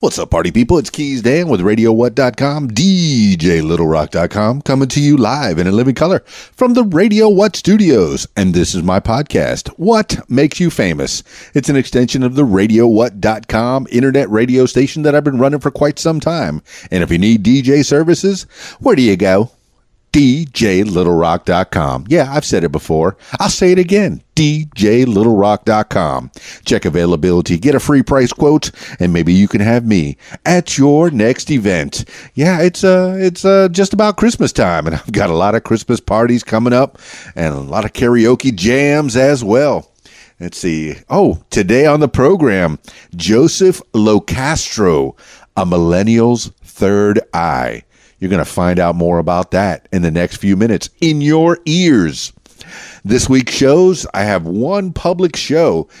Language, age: English, 40-59